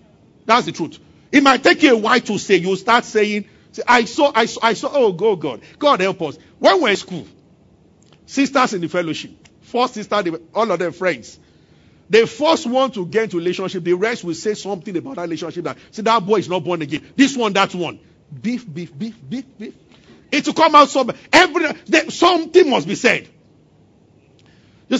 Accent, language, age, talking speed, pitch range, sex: Nigerian, English, 50-69, 205 wpm, 180-265 Hz, male